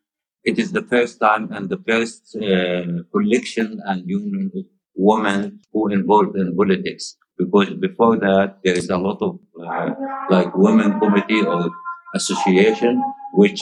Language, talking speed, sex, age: English, 145 wpm, male, 60-79